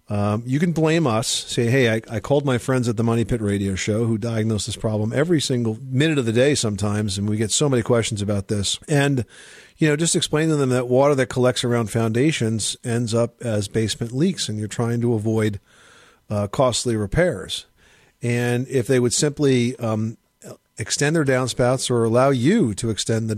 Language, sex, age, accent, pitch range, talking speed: English, male, 50-69, American, 110-135 Hz, 200 wpm